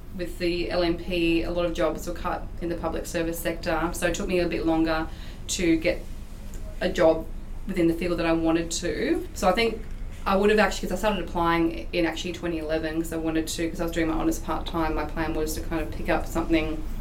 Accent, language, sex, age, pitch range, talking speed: Australian, English, female, 20-39, 170-220 Hz, 235 wpm